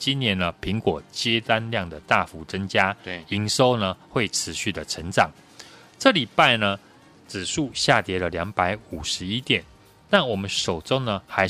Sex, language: male, Chinese